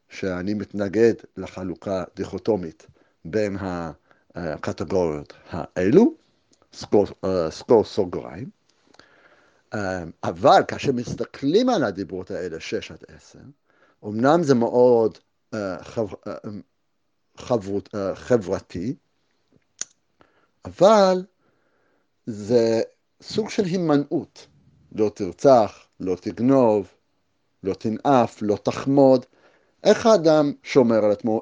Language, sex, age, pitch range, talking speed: Hebrew, male, 60-79, 110-170 Hz, 80 wpm